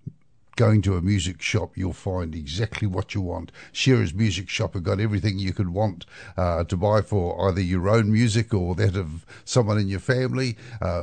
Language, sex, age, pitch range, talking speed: English, male, 60-79, 90-110 Hz, 195 wpm